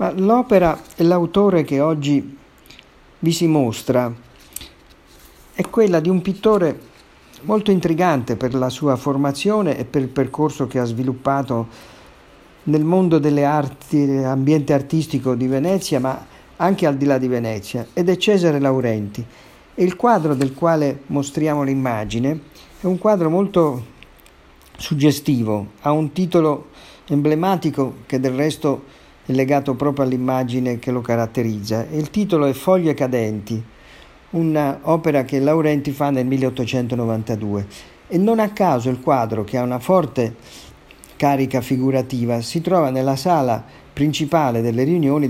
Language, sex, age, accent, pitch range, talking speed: Italian, male, 50-69, native, 120-155 Hz, 135 wpm